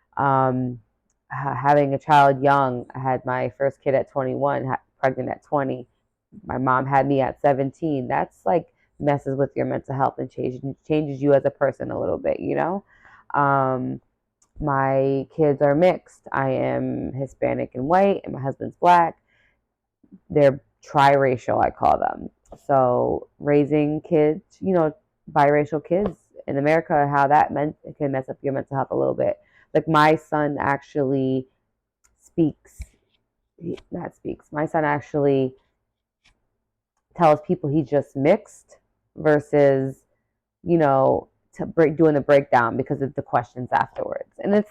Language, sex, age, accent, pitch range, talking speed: English, female, 20-39, American, 135-160 Hz, 150 wpm